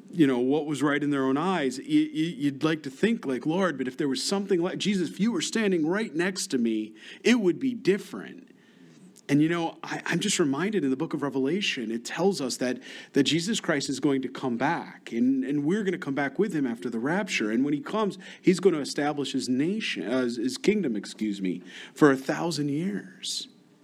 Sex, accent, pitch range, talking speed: male, American, 135-195 Hz, 220 wpm